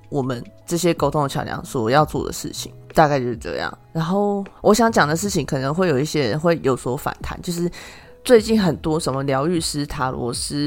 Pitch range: 140-175 Hz